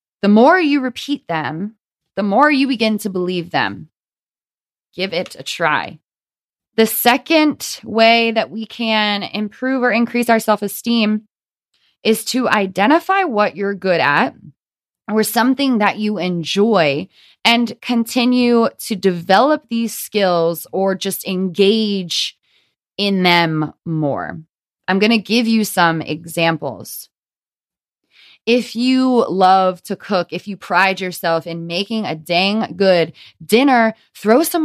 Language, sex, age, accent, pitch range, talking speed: English, female, 20-39, American, 185-235 Hz, 130 wpm